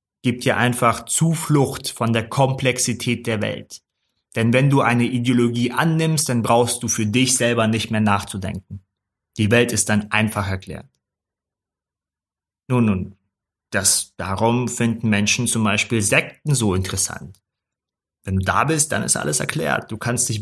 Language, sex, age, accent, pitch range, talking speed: German, male, 30-49, German, 100-125 Hz, 155 wpm